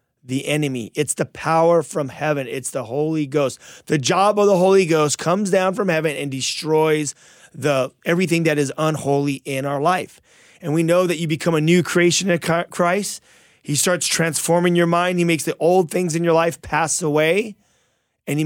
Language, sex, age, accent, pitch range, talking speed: English, male, 30-49, American, 150-175 Hz, 190 wpm